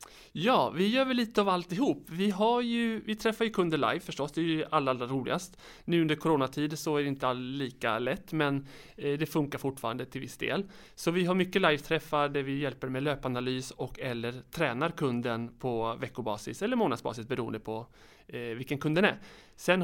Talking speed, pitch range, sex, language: 195 wpm, 135-175 Hz, male, Swedish